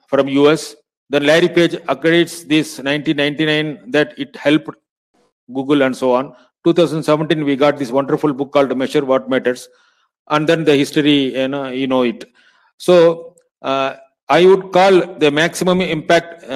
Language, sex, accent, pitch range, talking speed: English, male, Indian, 135-165 Hz, 150 wpm